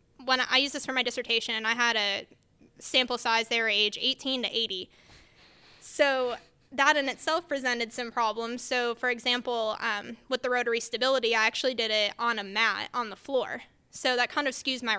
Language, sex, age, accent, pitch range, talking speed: English, female, 10-29, American, 215-255 Hz, 195 wpm